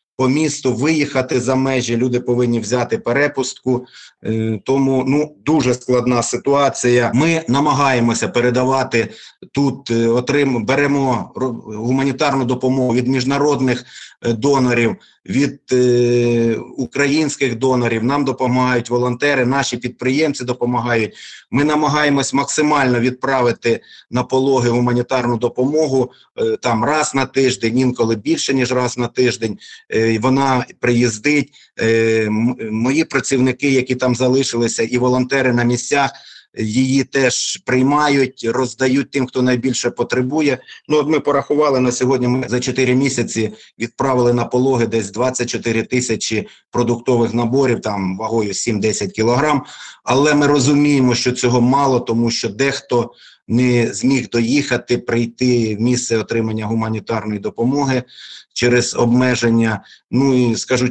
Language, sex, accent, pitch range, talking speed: Ukrainian, male, native, 120-135 Hz, 115 wpm